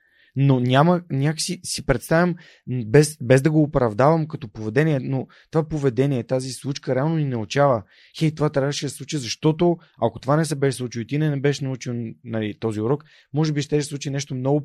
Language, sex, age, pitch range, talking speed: Bulgarian, male, 20-39, 125-160 Hz, 200 wpm